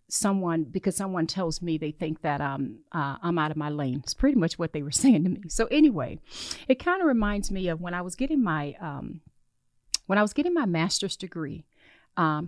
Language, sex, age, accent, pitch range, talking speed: English, female, 40-59, American, 150-180 Hz, 220 wpm